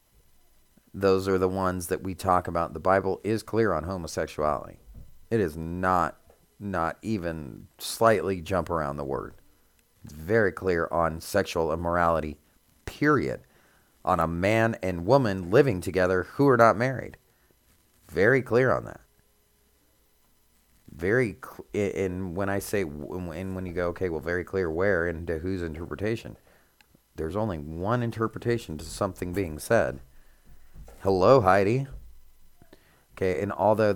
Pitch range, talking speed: 80-100 Hz, 135 wpm